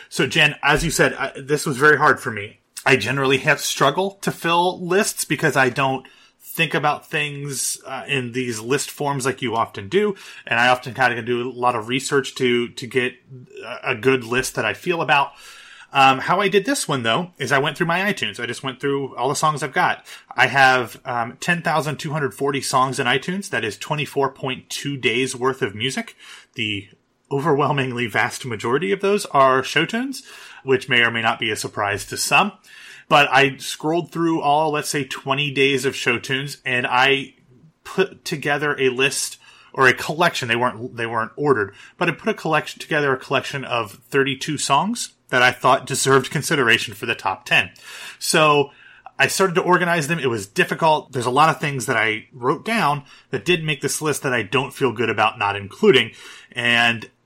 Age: 30-49